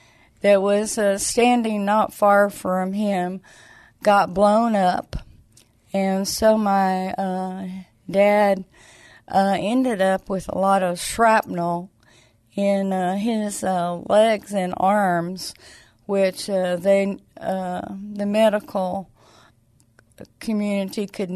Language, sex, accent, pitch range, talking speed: English, female, American, 185-220 Hz, 110 wpm